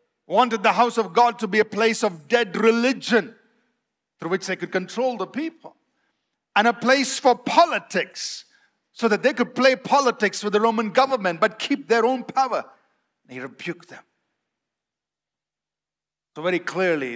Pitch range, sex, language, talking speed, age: 180-255 Hz, male, English, 155 wpm, 50-69